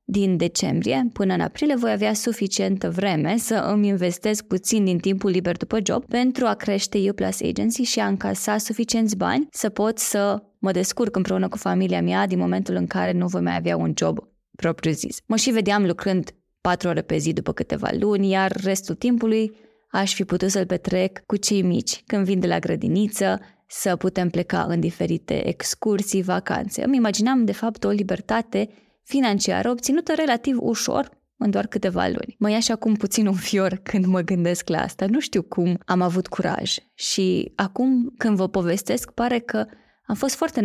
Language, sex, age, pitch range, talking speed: Romanian, female, 20-39, 185-220 Hz, 185 wpm